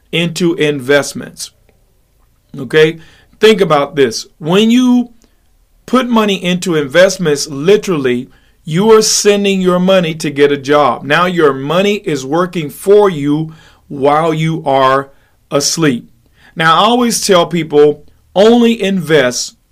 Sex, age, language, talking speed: male, 50-69, English, 120 wpm